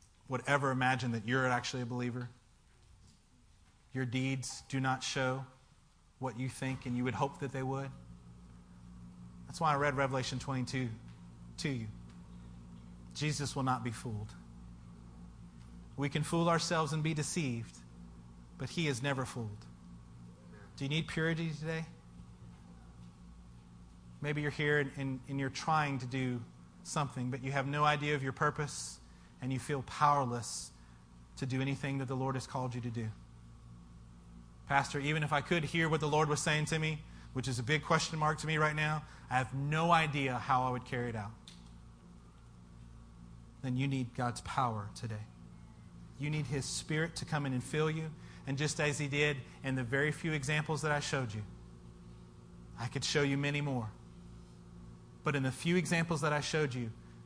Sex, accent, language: male, American, English